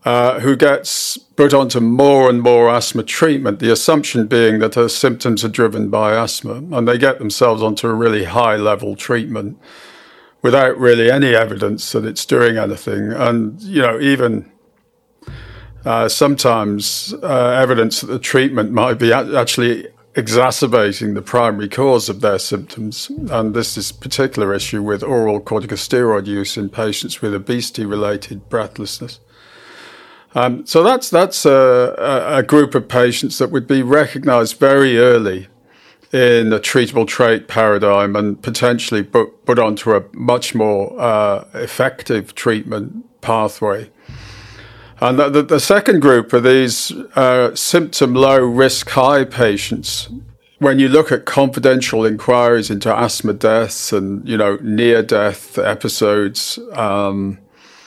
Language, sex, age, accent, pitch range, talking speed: English, male, 50-69, British, 110-130 Hz, 140 wpm